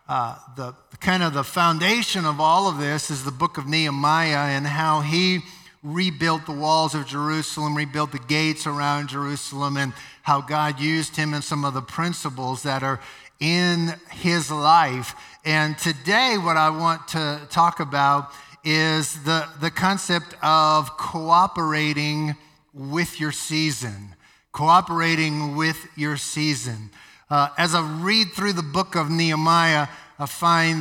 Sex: male